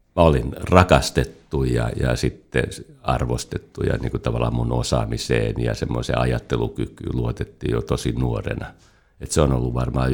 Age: 60-79